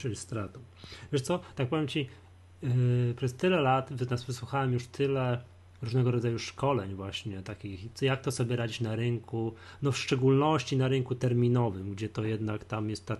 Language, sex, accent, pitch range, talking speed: Polish, male, native, 110-130 Hz, 175 wpm